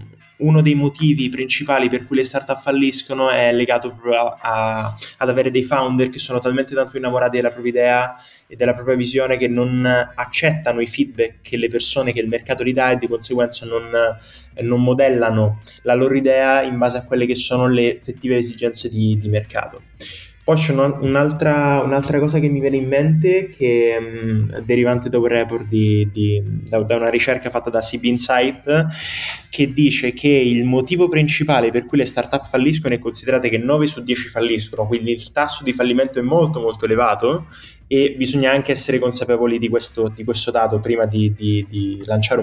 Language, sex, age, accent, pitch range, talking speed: Italian, male, 20-39, native, 115-140 Hz, 185 wpm